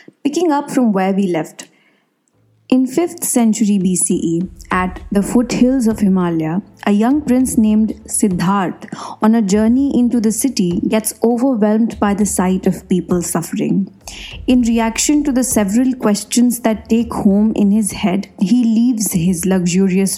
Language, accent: English, Indian